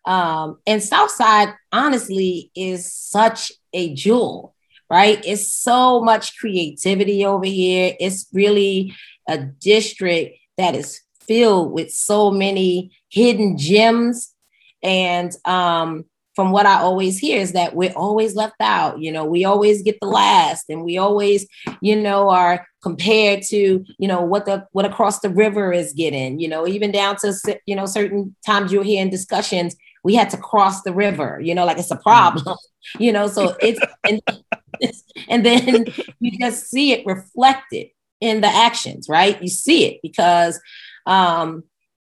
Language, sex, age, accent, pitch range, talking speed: English, female, 30-49, American, 175-210 Hz, 160 wpm